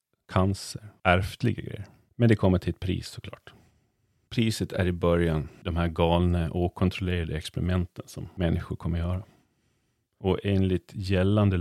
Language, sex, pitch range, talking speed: Swedish, male, 85-105 Hz, 140 wpm